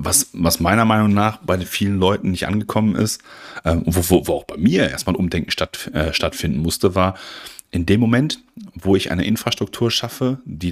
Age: 40-59